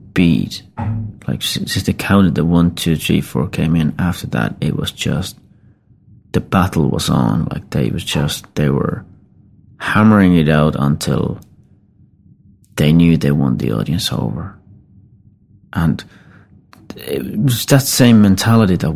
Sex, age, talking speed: male, 30-49, 140 wpm